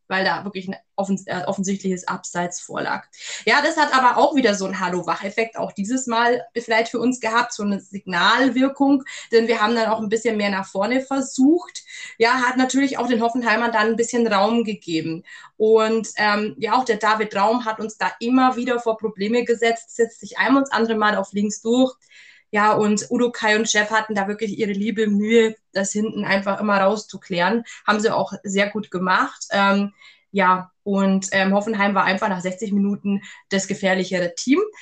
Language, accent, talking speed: German, German, 190 wpm